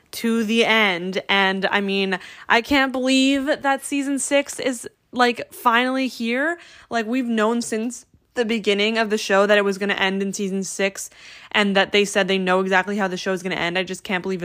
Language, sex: English, female